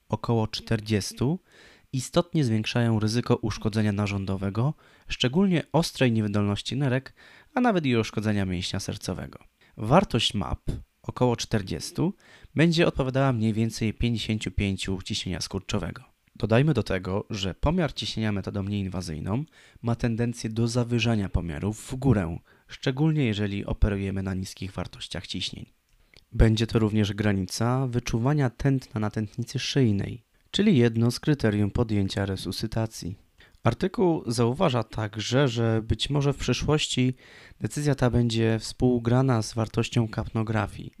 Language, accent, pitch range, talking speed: Polish, native, 100-125 Hz, 115 wpm